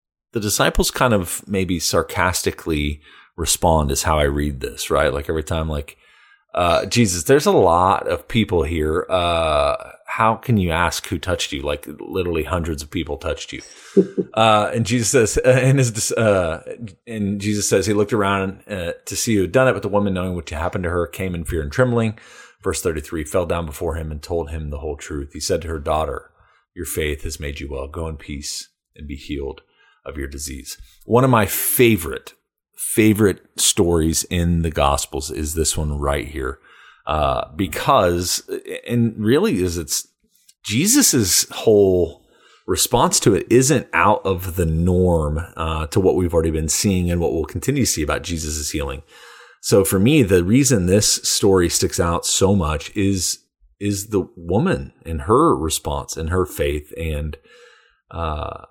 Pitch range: 80-100 Hz